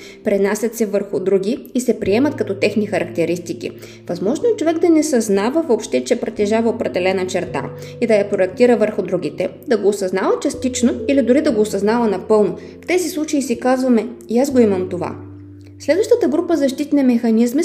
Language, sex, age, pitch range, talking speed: Bulgarian, female, 20-39, 200-265 Hz, 175 wpm